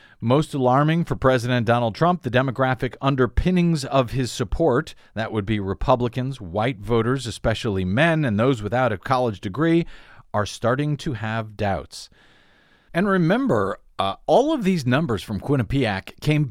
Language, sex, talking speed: English, male, 150 wpm